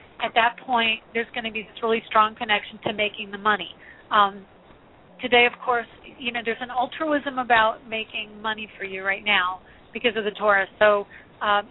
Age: 40-59